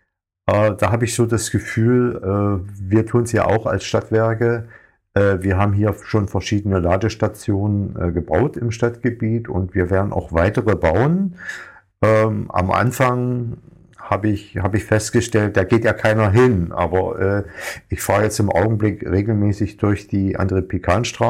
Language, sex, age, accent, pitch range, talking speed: German, male, 50-69, German, 95-115 Hz, 145 wpm